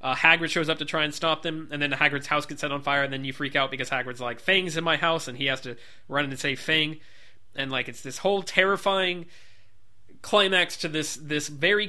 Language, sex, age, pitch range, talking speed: English, male, 20-39, 115-165 Hz, 245 wpm